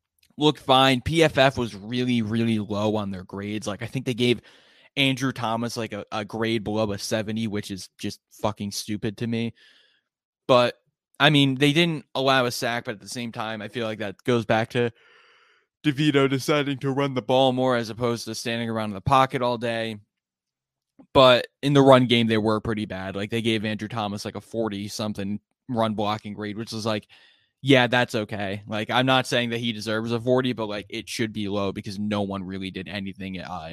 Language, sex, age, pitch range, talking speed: English, male, 20-39, 105-125 Hz, 210 wpm